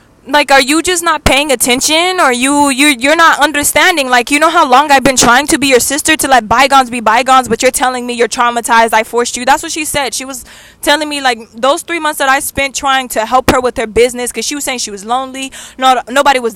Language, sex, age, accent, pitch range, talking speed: English, female, 10-29, American, 240-285 Hz, 260 wpm